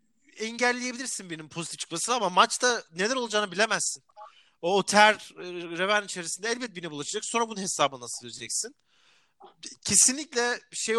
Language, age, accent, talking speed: Turkish, 40-59, native, 125 wpm